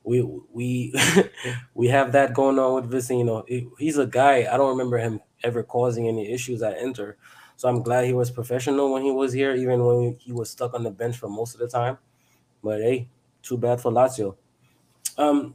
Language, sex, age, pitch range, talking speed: English, male, 20-39, 120-135 Hz, 210 wpm